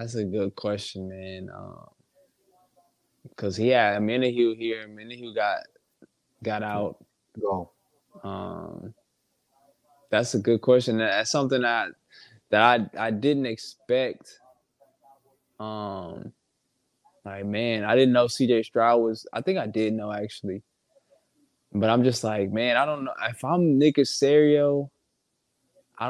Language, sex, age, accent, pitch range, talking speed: English, male, 20-39, American, 110-135 Hz, 145 wpm